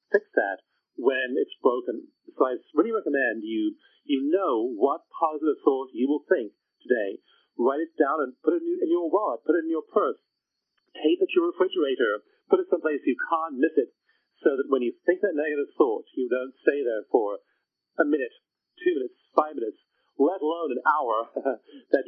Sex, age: male, 40-59